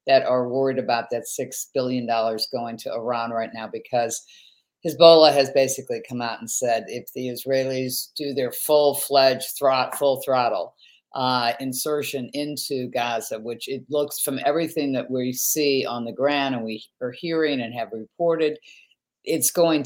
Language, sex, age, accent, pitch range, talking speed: English, female, 50-69, American, 125-150 Hz, 160 wpm